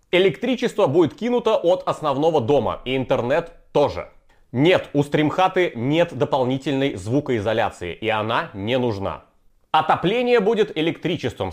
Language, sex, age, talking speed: Bulgarian, male, 30-49, 115 wpm